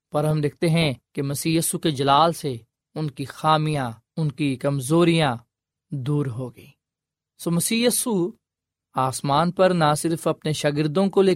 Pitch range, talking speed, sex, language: 135-170 Hz, 155 wpm, male, Urdu